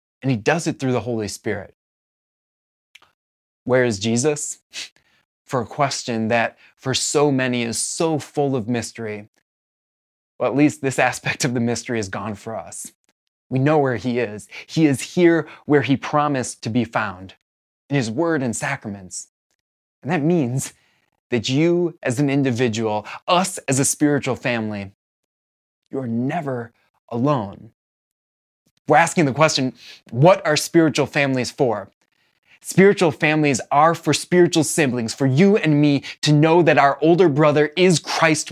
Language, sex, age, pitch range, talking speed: English, male, 20-39, 115-150 Hz, 150 wpm